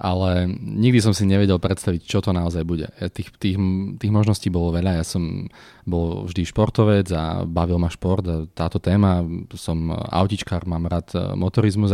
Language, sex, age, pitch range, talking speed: Slovak, male, 30-49, 90-105 Hz, 175 wpm